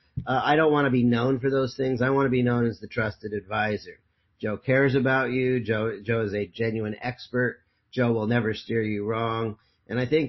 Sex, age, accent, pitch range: male, 40-59, American, 105-125 Hz